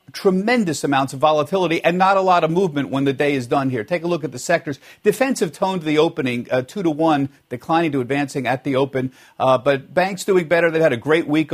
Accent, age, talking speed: American, 50-69, 245 wpm